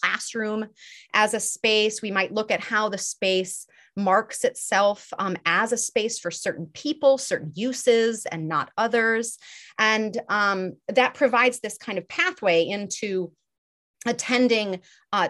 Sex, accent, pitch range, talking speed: female, American, 180-225 Hz, 140 wpm